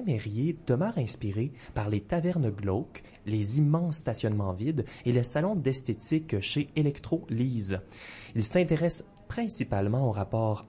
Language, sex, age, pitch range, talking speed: French, male, 20-39, 105-150 Hz, 125 wpm